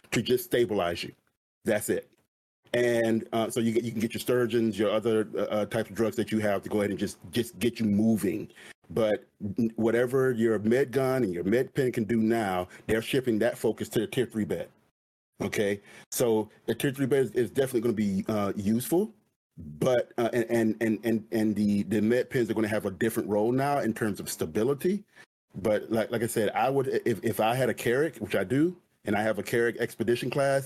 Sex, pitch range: male, 105-120 Hz